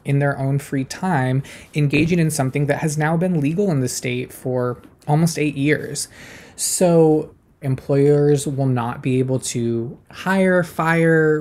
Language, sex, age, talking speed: English, male, 20-39, 155 wpm